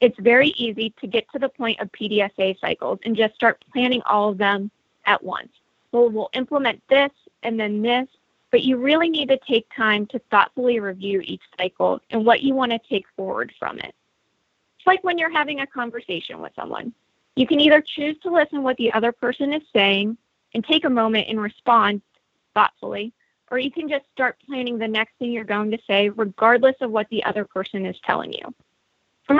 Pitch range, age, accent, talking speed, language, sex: 210-260 Hz, 30-49, American, 200 wpm, English, female